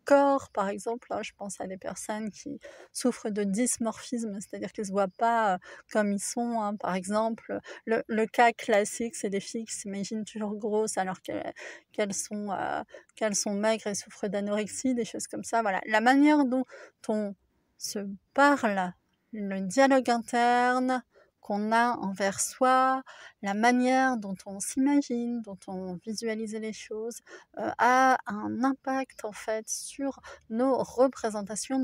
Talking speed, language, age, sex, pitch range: 160 wpm, French, 30-49, female, 215-260 Hz